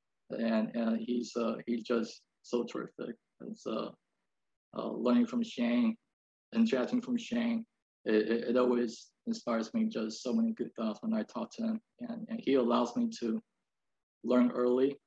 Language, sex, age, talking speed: English, male, 20-39, 160 wpm